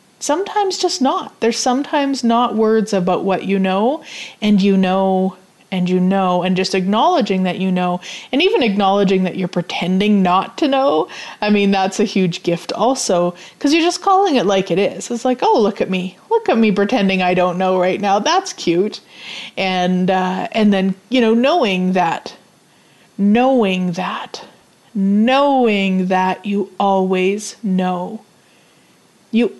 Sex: female